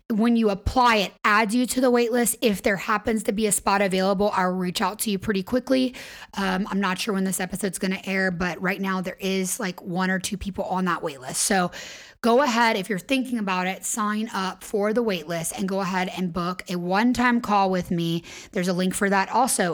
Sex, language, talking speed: female, English, 230 wpm